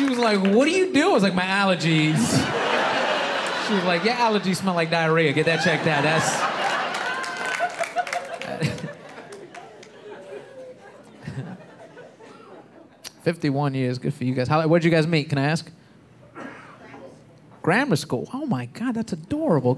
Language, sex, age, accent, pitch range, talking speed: English, male, 30-49, American, 130-190 Hz, 140 wpm